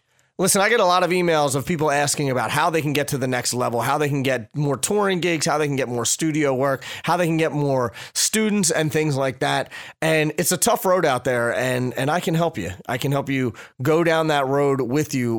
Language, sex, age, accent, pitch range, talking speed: English, male, 30-49, American, 120-155 Hz, 255 wpm